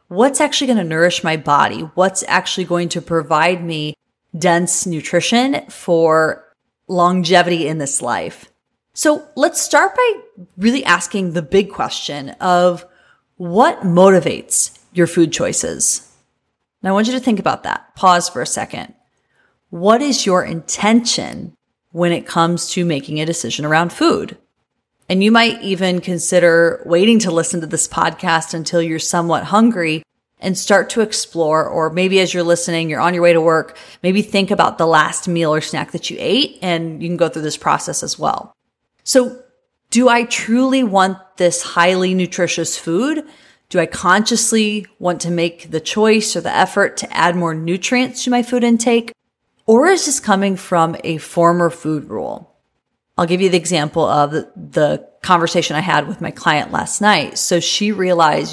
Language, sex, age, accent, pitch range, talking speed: English, female, 30-49, American, 165-215 Hz, 170 wpm